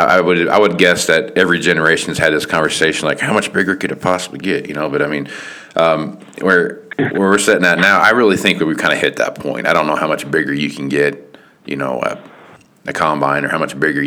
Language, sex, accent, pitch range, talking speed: English, male, American, 70-85 Hz, 255 wpm